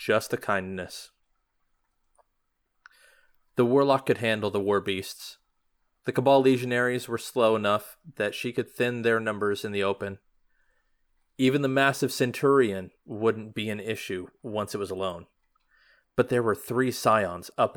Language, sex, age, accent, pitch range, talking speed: English, male, 30-49, American, 100-125 Hz, 145 wpm